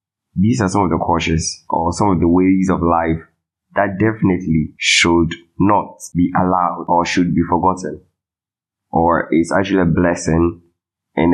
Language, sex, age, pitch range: English, male, 20-39, 80-90 Hz